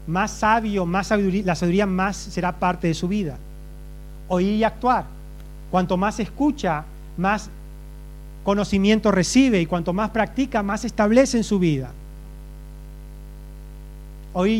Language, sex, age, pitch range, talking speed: Spanish, male, 40-59, 180-235 Hz, 125 wpm